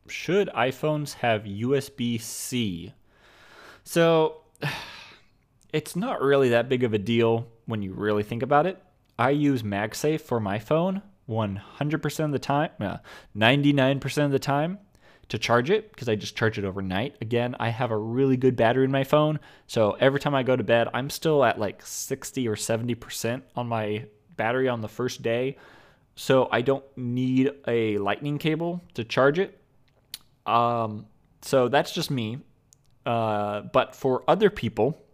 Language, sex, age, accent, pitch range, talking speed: English, male, 20-39, American, 115-145 Hz, 160 wpm